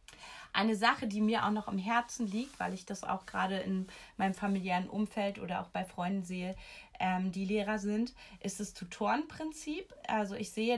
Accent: German